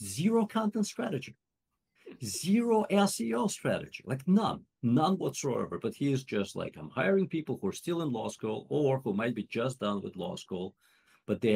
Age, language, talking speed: 50-69, English, 180 wpm